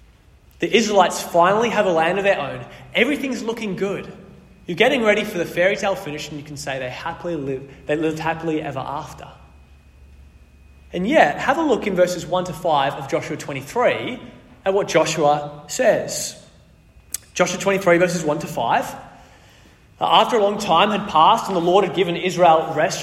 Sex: male